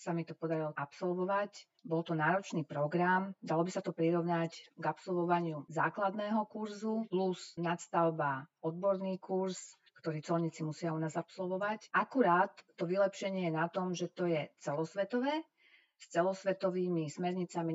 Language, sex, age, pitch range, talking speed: Slovak, female, 40-59, 155-190 Hz, 140 wpm